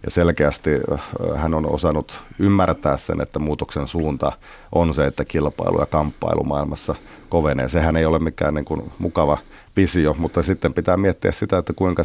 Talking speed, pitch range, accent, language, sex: 165 wpm, 75-90 Hz, native, Finnish, male